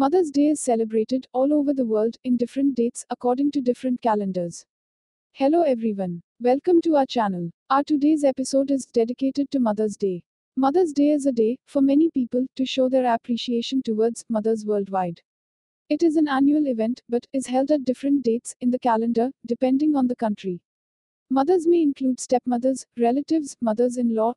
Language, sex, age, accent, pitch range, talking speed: English, female, 50-69, Indian, 230-275 Hz, 165 wpm